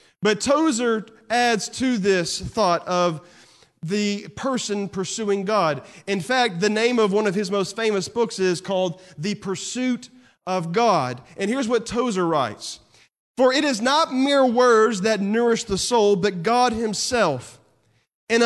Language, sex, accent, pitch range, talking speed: English, male, American, 195-245 Hz, 155 wpm